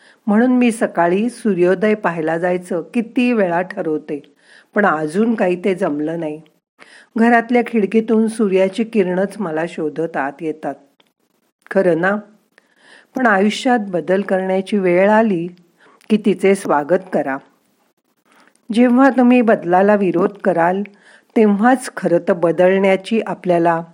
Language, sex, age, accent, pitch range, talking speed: Marathi, female, 50-69, native, 175-230 Hz, 115 wpm